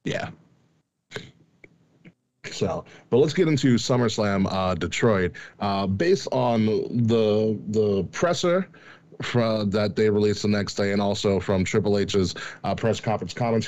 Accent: American